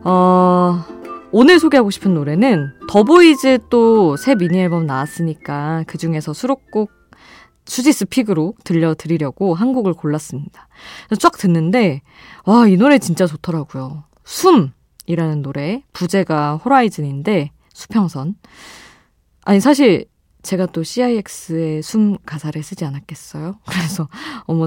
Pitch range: 155-225 Hz